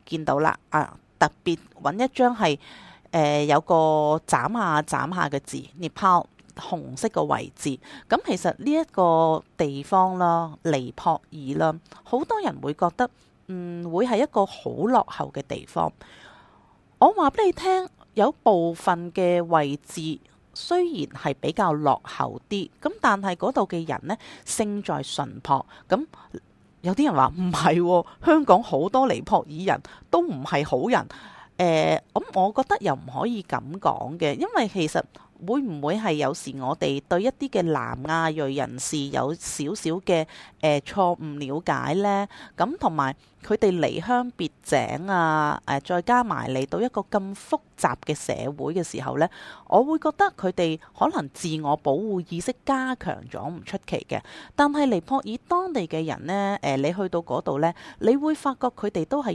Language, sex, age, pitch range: Chinese, female, 30-49, 155-240 Hz